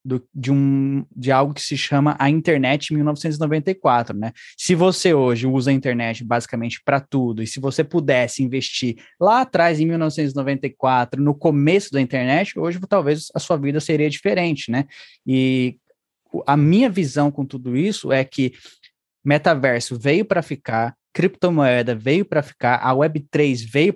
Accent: Brazilian